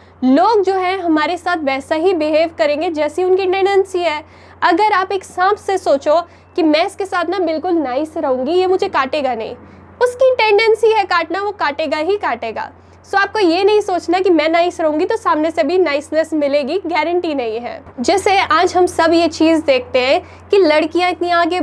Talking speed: 190 wpm